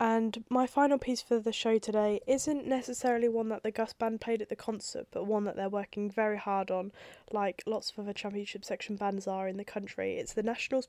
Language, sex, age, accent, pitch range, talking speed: English, female, 10-29, British, 200-230 Hz, 225 wpm